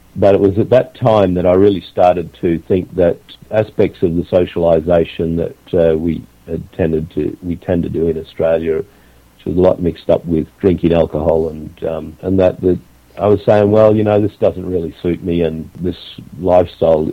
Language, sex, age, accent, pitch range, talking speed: English, male, 50-69, Australian, 85-100 Hz, 200 wpm